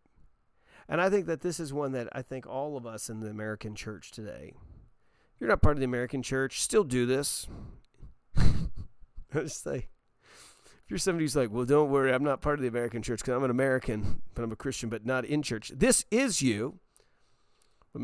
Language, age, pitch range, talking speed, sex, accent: English, 40-59, 110-135 Hz, 205 wpm, male, American